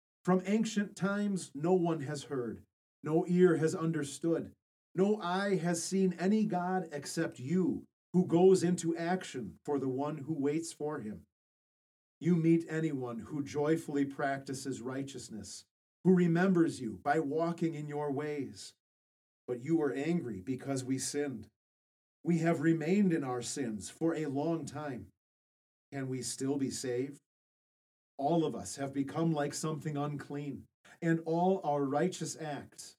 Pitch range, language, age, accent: 130-165 Hz, English, 40-59, American